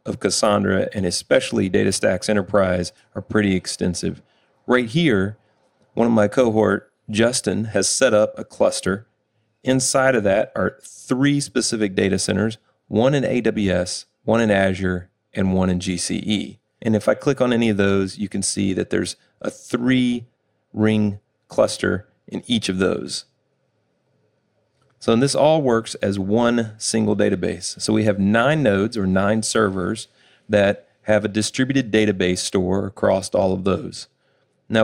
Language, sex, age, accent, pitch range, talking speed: English, male, 30-49, American, 100-115 Hz, 150 wpm